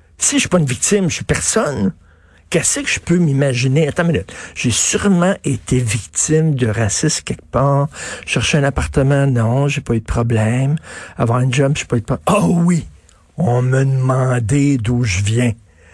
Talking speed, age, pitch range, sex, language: 195 wpm, 60-79, 120-170 Hz, male, French